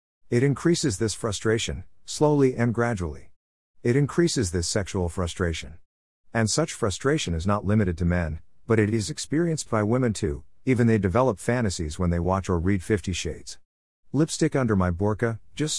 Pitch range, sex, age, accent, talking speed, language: 90-125 Hz, male, 50-69, American, 165 wpm, English